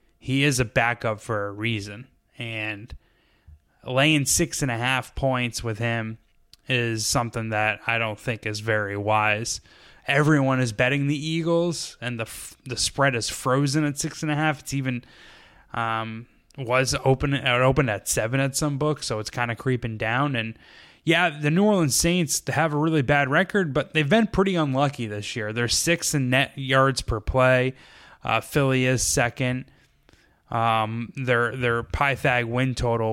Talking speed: 170 wpm